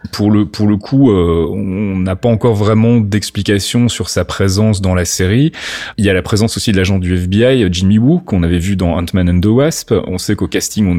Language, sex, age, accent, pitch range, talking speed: French, male, 30-49, French, 90-115 Hz, 235 wpm